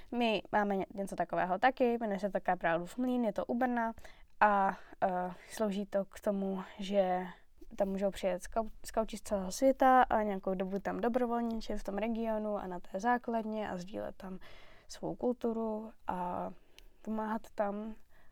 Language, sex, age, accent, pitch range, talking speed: Czech, female, 10-29, native, 185-220 Hz, 155 wpm